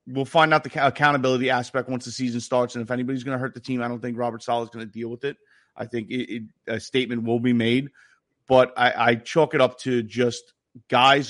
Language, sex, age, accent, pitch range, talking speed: English, male, 30-49, American, 120-135 Hz, 240 wpm